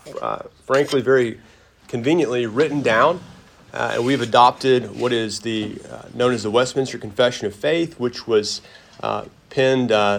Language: English